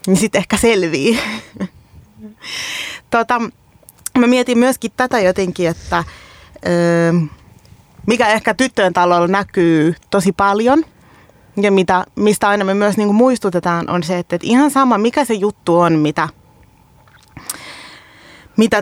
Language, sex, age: Finnish, female, 20-39